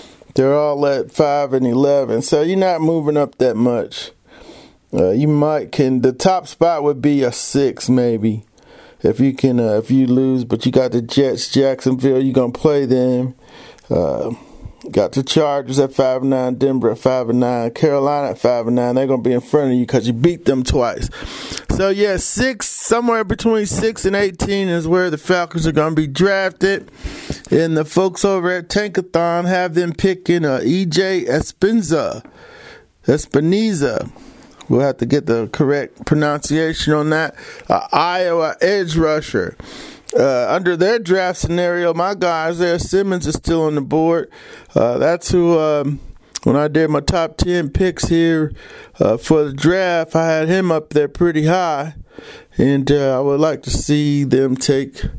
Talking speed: 170 wpm